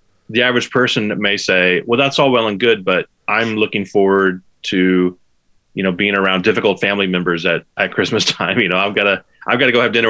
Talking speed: 225 wpm